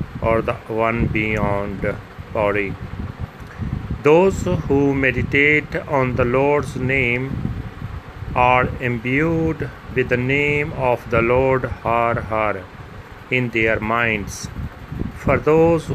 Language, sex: Punjabi, male